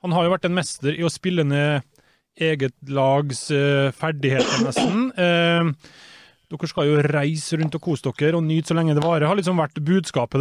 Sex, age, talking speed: male, 20-39, 180 wpm